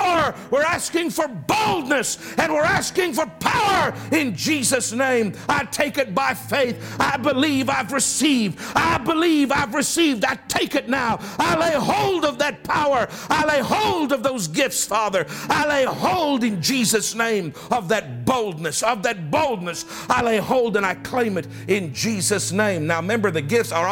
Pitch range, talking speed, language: 215-280 Hz, 175 wpm, English